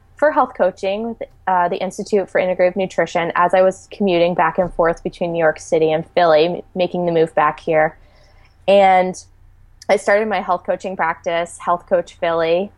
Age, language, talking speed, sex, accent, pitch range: 20-39, English, 175 wpm, female, American, 165-185 Hz